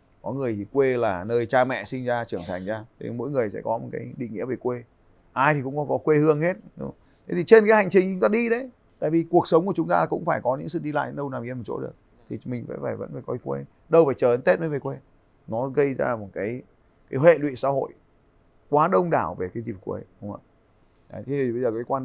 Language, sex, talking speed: Vietnamese, male, 285 wpm